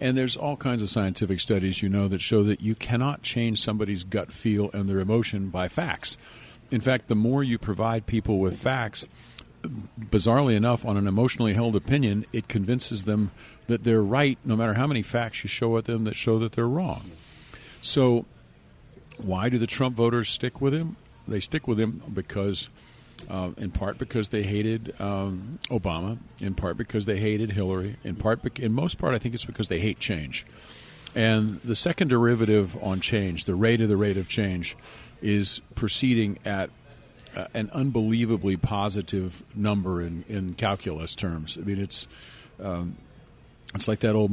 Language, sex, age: English, male, 50-69